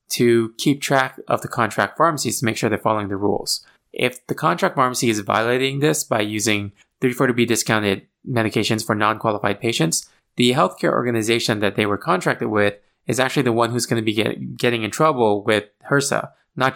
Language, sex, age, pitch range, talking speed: English, male, 20-39, 110-135 Hz, 185 wpm